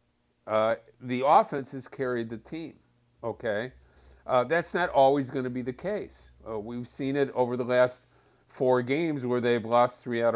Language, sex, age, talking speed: English, male, 50-69, 180 wpm